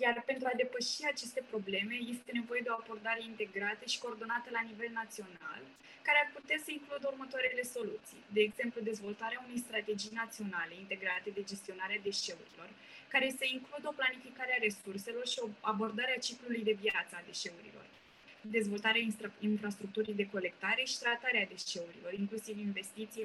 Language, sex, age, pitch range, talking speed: Romanian, female, 20-39, 210-245 Hz, 155 wpm